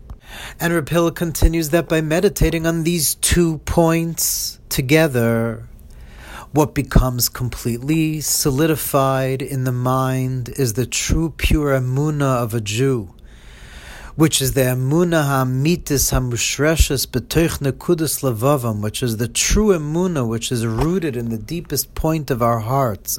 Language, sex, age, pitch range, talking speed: English, male, 40-59, 125-165 Hz, 125 wpm